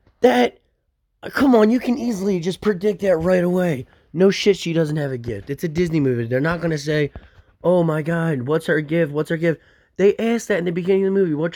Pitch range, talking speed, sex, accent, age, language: 105-165 Hz, 240 wpm, male, American, 20-39, English